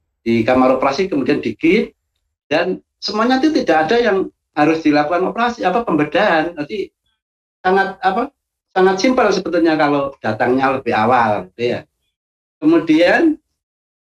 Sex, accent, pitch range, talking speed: male, native, 130-195 Hz, 120 wpm